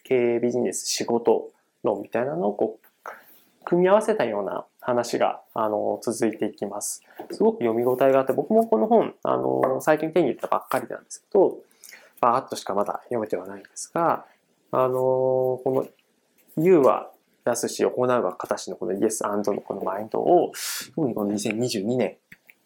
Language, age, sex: Japanese, 20-39, male